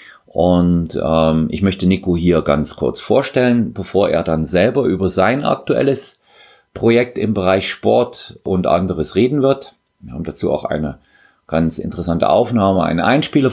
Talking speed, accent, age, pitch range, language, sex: 150 wpm, German, 40-59, 80-95 Hz, German, male